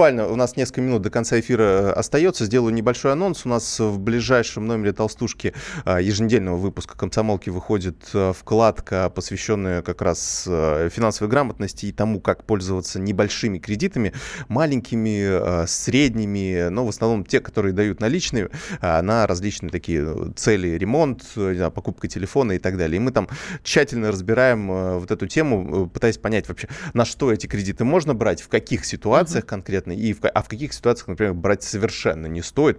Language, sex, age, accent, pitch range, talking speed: Russian, male, 20-39, native, 95-120 Hz, 150 wpm